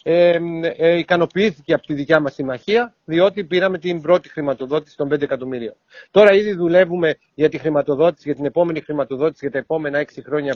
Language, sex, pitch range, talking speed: Greek, male, 150-195 Hz, 175 wpm